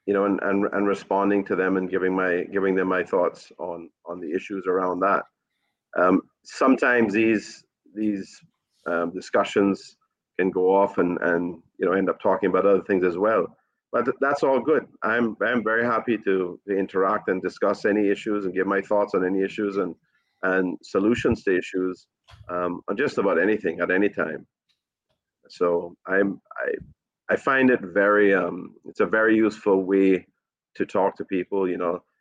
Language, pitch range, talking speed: English, 95-105 Hz, 175 wpm